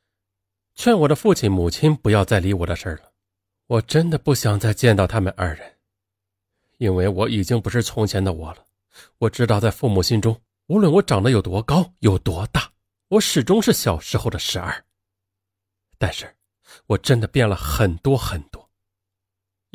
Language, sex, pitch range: Chinese, male, 95-120 Hz